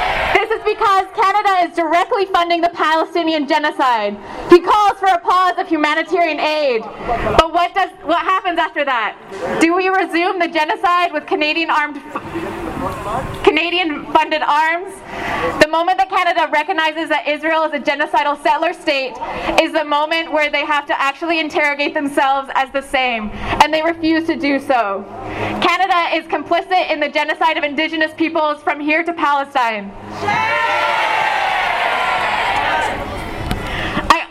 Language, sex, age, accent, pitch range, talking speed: English, female, 20-39, American, 300-355 Hz, 140 wpm